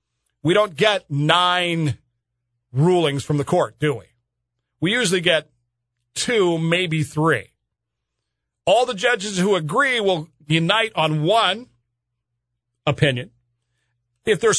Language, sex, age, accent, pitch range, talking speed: English, male, 40-59, American, 130-195 Hz, 115 wpm